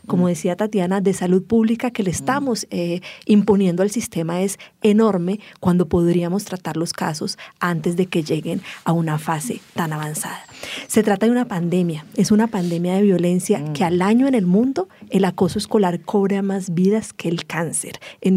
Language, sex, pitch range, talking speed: English, female, 175-210 Hz, 180 wpm